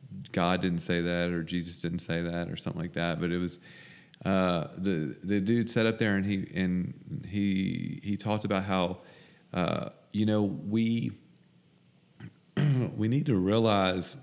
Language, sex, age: English, male, 40-59